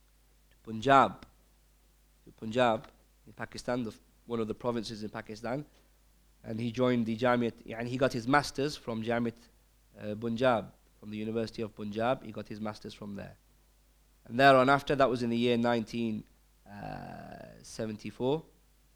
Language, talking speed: English, 140 wpm